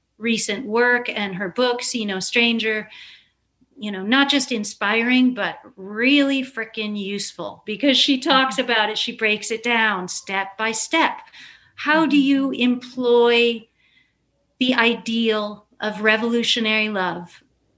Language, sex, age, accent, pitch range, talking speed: English, female, 40-59, American, 210-250 Hz, 130 wpm